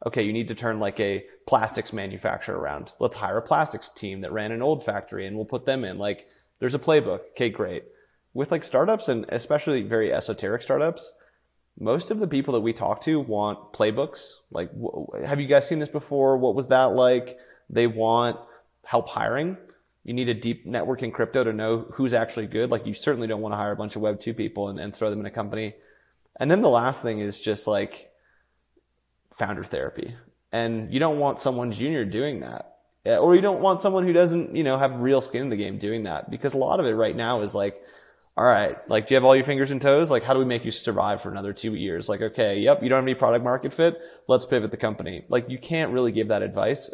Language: English